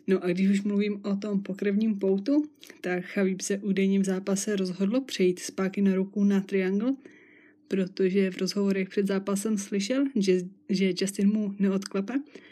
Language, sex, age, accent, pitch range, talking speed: Czech, female, 20-39, native, 190-210 Hz, 155 wpm